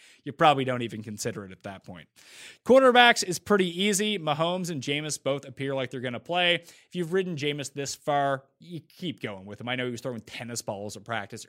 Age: 30-49